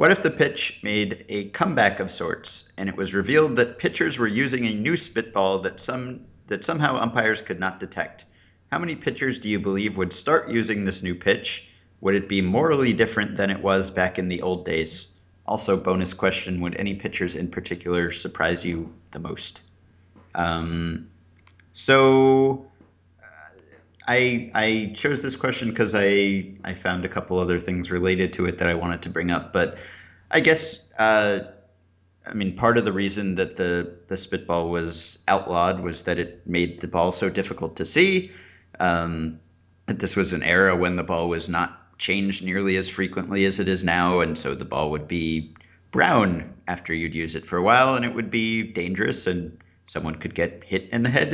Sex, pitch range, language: male, 85-105 Hz, English